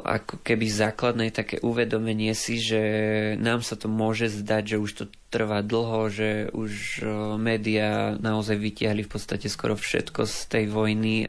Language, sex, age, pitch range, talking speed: Slovak, male, 20-39, 105-115 Hz, 155 wpm